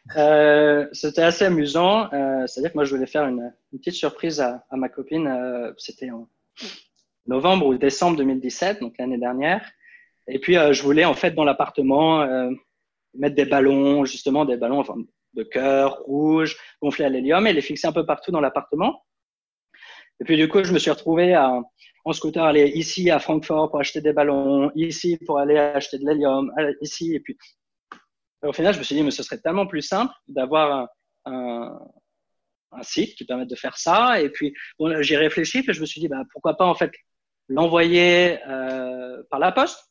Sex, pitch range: male, 135-165 Hz